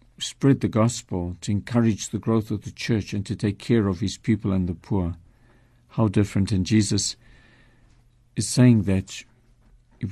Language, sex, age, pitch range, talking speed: English, male, 50-69, 105-120 Hz, 165 wpm